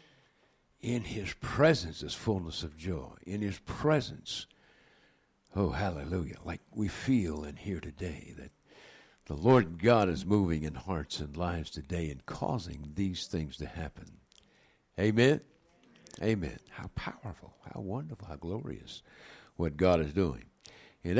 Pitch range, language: 80-115 Hz, English